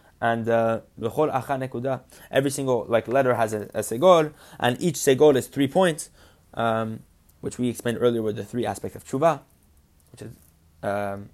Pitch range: 110-135 Hz